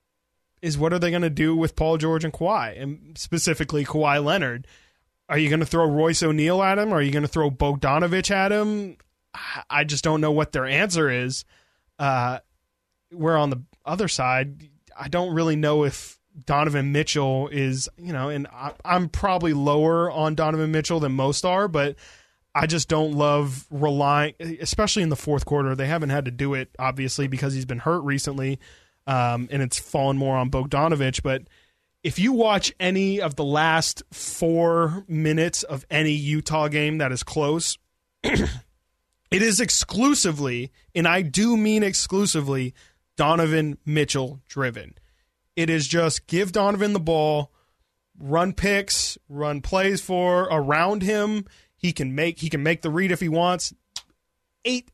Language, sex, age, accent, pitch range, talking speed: English, male, 20-39, American, 140-170 Hz, 165 wpm